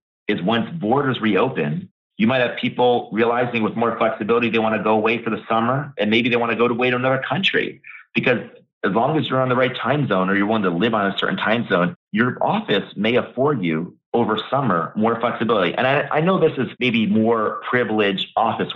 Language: English